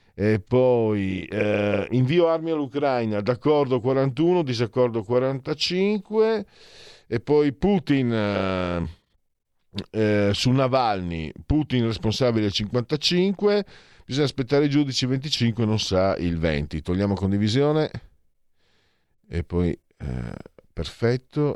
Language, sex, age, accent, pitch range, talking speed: Italian, male, 50-69, native, 85-120 Hz, 100 wpm